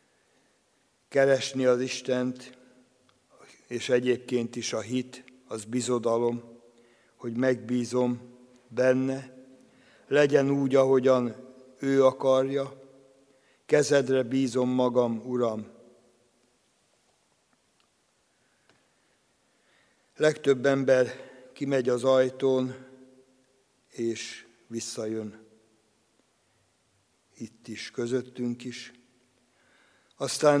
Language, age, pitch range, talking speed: Hungarian, 60-79, 120-130 Hz, 65 wpm